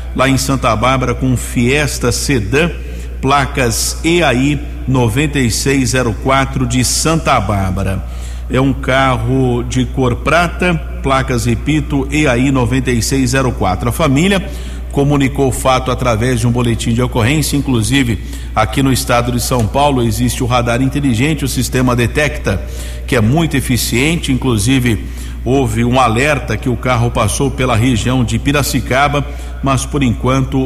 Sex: male